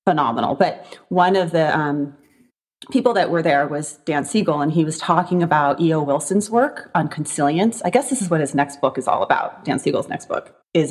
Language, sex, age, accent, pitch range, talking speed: English, female, 30-49, American, 145-180 Hz, 215 wpm